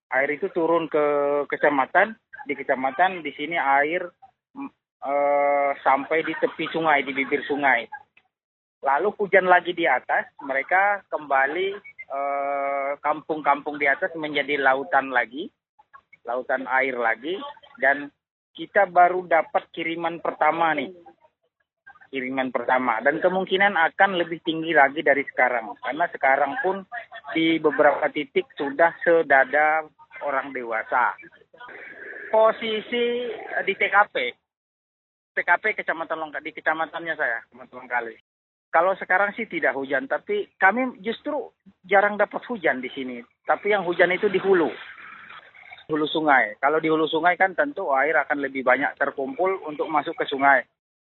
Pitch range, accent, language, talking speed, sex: 140-195 Hz, native, Indonesian, 130 wpm, male